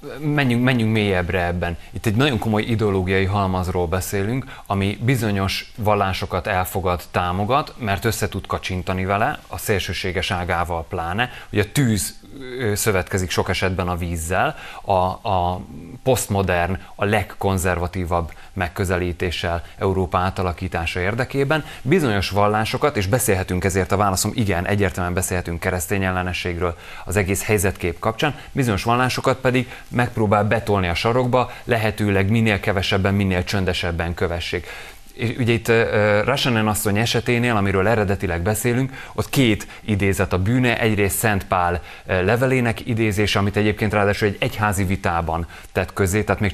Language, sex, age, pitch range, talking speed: Hungarian, male, 30-49, 90-110 Hz, 130 wpm